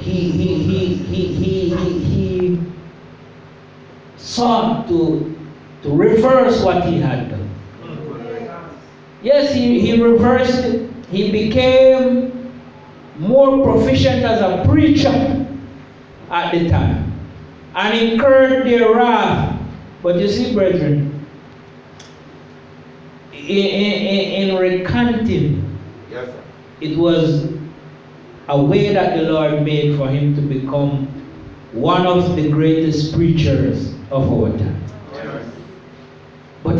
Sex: male